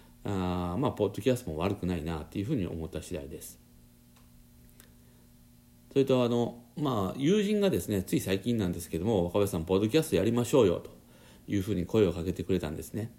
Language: Japanese